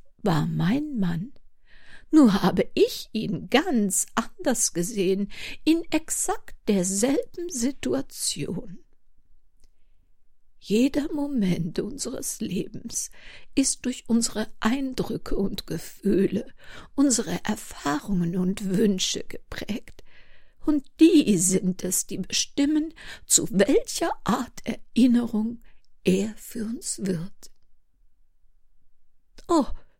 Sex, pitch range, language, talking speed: female, 180-240 Hz, German, 90 wpm